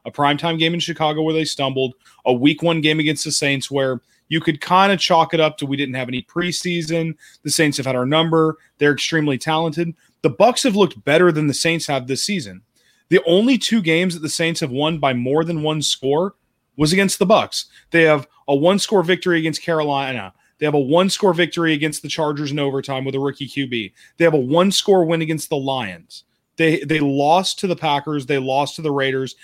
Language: English